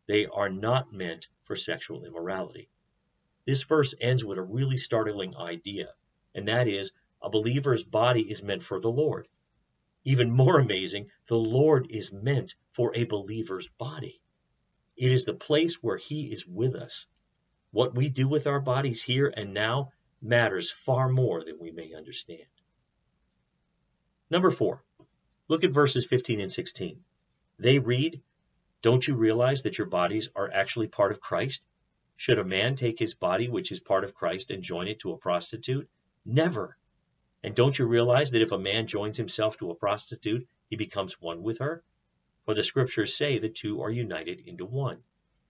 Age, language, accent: 50-69, English, American